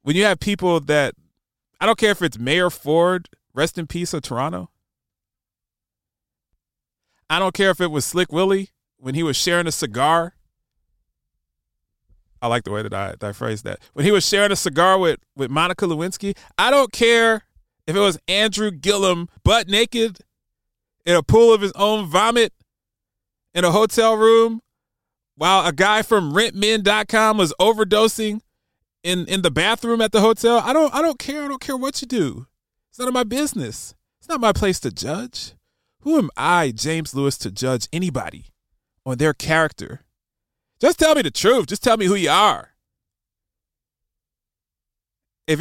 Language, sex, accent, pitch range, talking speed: English, male, American, 135-215 Hz, 170 wpm